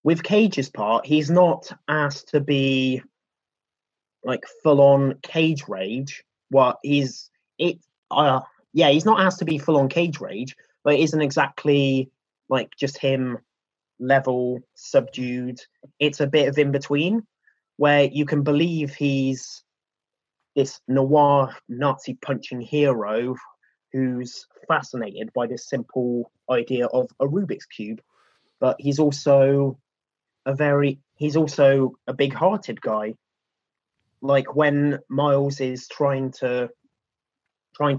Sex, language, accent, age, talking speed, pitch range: male, English, British, 20-39, 125 wpm, 125-145 Hz